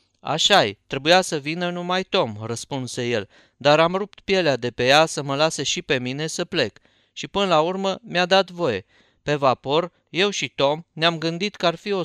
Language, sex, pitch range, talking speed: Romanian, male, 125-170 Hz, 210 wpm